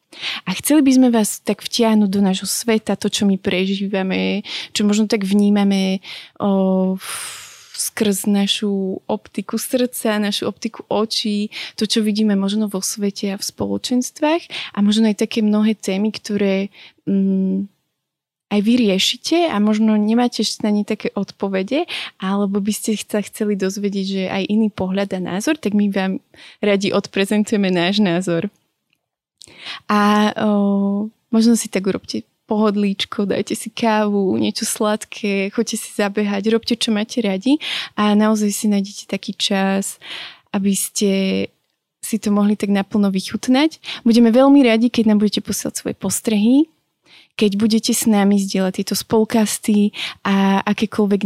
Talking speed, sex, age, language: 145 wpm, female, 20-39, Slovak